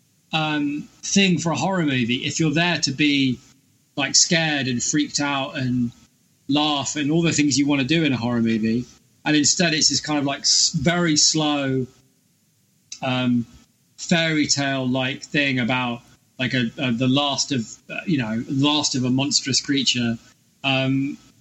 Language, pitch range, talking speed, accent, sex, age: English, 125-155 Hz, 170 wpm, British, male, 20-39